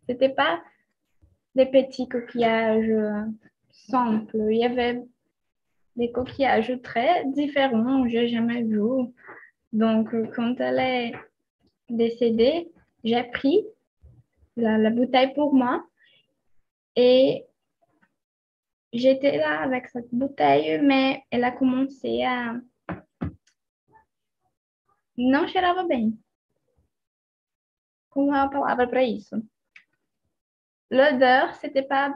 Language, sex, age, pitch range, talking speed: Portuguese, female, 10-29, 230-275 Hz, 90 wpm